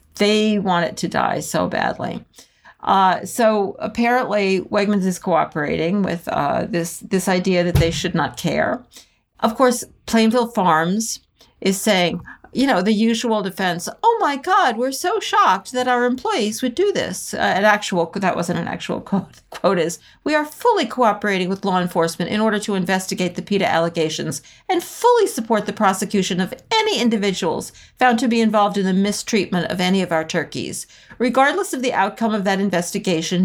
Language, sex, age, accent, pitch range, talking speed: English, female, 50-69, American, 175-240 Hz, 175 wpm